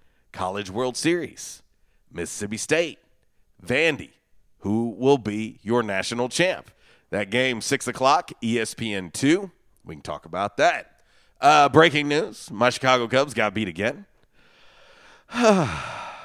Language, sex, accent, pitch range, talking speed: English, male, American, 105-145 Hz, 120 wpm